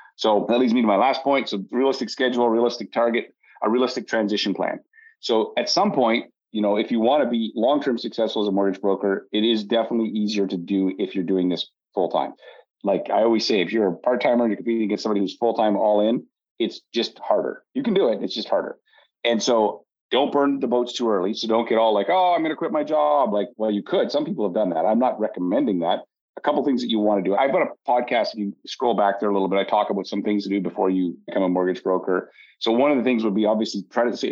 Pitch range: 95-120 Hz